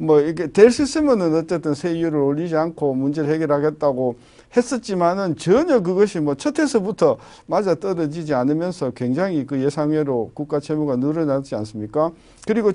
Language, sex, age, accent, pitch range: Korean, male, 50-69, native, 145-200 Hz